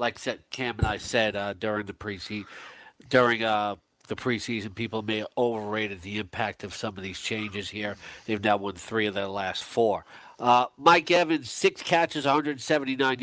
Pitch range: 115-140 Hz